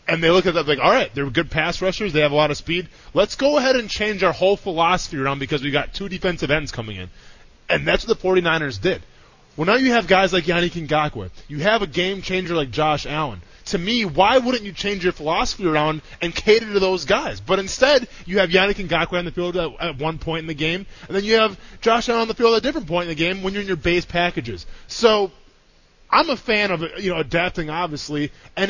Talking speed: 245 wpm